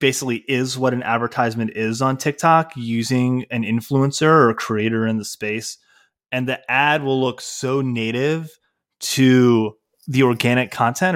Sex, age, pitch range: male, 20-39, 115-140 Hz